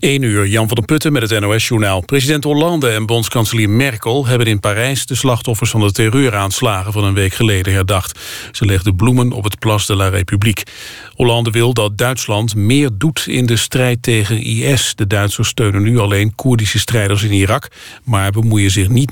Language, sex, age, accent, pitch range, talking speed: Dutch, male, 50-69, Dutch, 105-130 Hz, 190 wpm